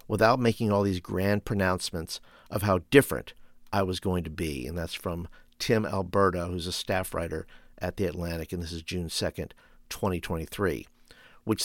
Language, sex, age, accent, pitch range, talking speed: English, male, 50-69, American, 90-115 Hz, 170 wpm